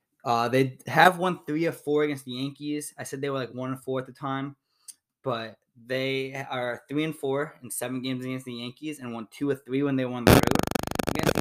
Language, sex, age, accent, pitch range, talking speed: English, male, 20-39, American, 125-145 Hz, 235 wpm